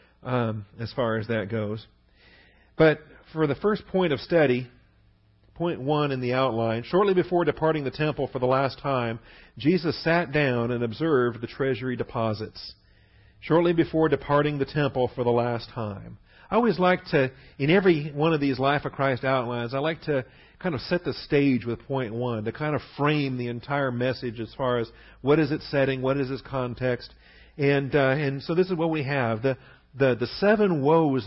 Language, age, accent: English, 40-59, American